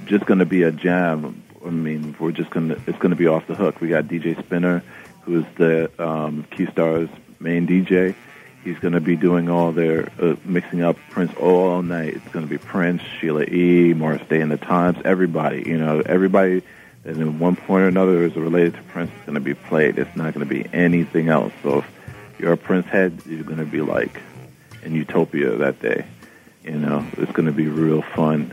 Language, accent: English, American